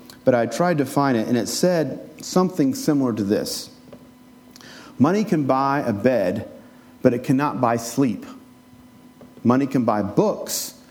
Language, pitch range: English, 120-200 Hz